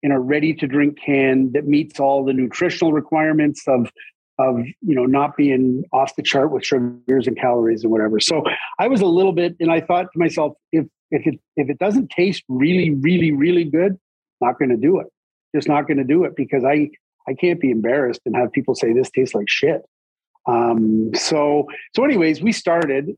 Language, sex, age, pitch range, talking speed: English, male, 40-59, 130-165 Hz, 205 wpm